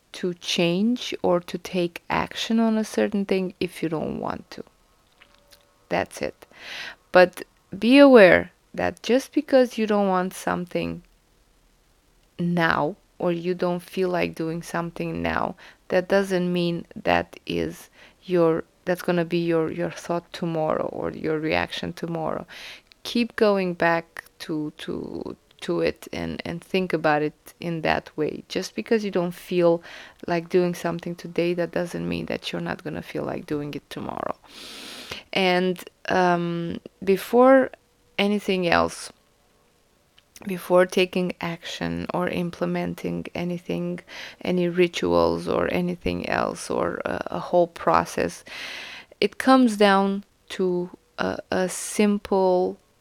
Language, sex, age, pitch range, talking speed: English, female, 20-39, 160-190 Hz, 135 wpm